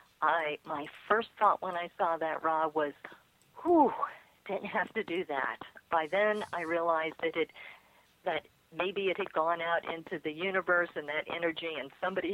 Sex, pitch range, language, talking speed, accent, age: female, 150-180 Hz, English, 175 wpm, American, 50-69